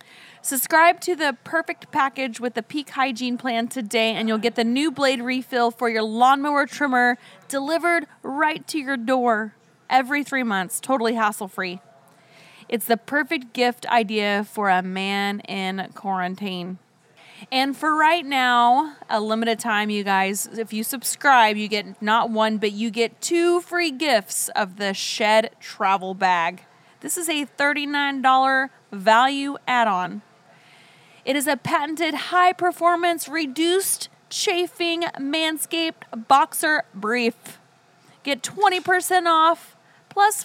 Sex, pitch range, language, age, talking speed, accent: female, 220-310 Hz, English, 30-49, 130 wpm, American